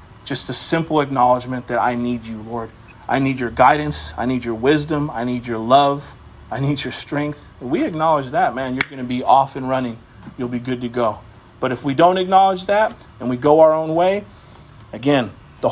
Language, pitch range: English, 125-175 Hz